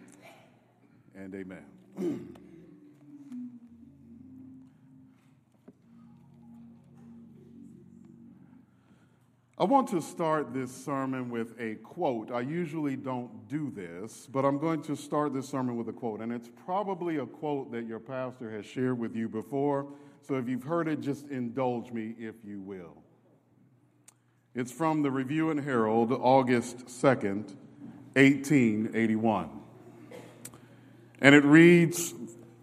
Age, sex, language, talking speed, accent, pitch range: 50-69, male, English, 115 wpm, American, 115-150 Hz